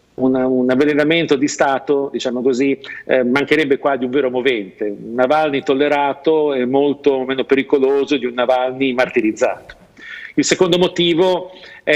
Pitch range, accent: 120-145 Hz, native